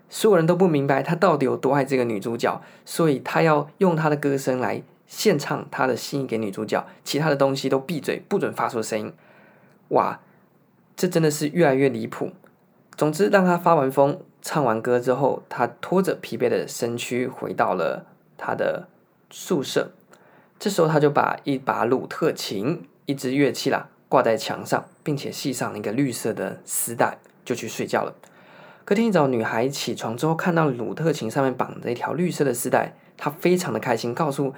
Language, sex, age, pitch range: Chinese, male, 20-39, 130-175 Hz